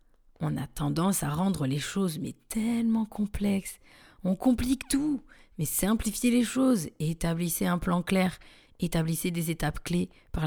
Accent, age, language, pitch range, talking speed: French, 30-49, French, 150-190 Hz, 150 wpm